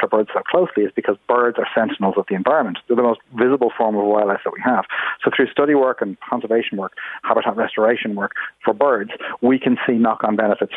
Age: 40-59